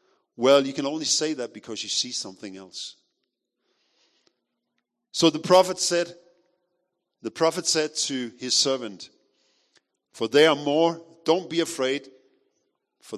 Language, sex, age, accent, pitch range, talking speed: English, male, 50-69, German, 115-195 Hz, 130 wpm